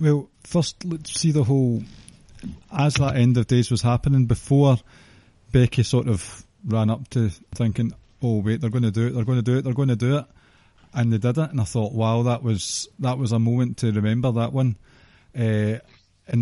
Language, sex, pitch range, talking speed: English, male, 110-135 Hz, 210 wpm